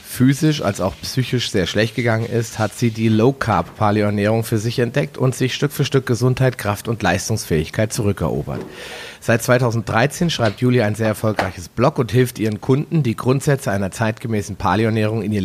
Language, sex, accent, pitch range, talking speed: German, male, German, 105-130 Hz, 170 wpm